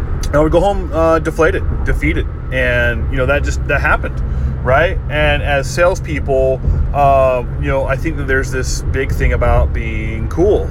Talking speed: 185 wpm